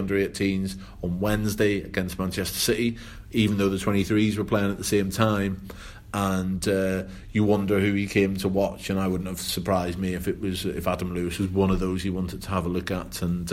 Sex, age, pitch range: male, 30-49, 90-100 Hz